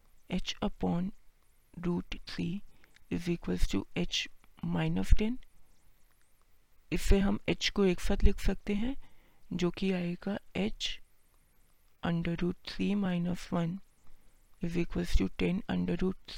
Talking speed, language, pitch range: 125 wpm, Hindi, 165-195 Hz